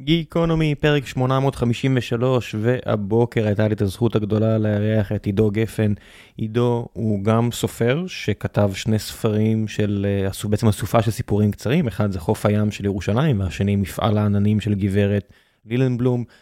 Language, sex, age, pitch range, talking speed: Hebrew, male, 20-39, 105-130 Hz, 140 wpm